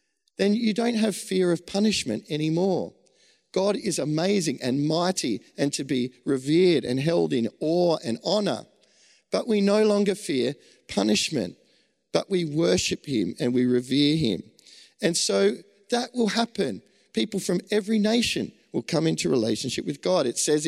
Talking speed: 155 wpm